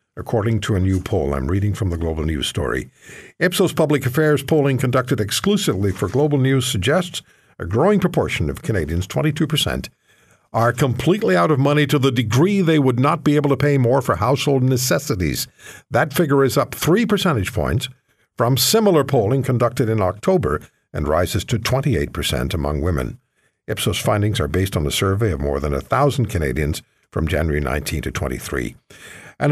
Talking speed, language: 170 wpm, English